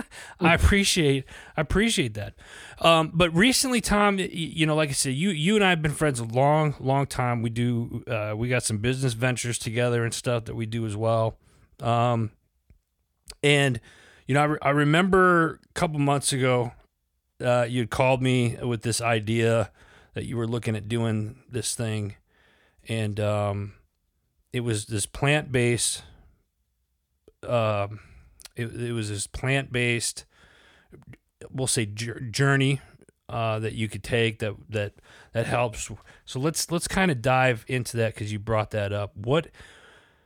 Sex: male